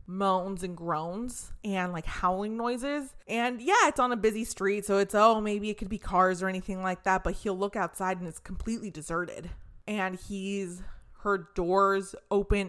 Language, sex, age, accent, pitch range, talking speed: English, female, 20-39, American, 180-215 Hz, 185 wpm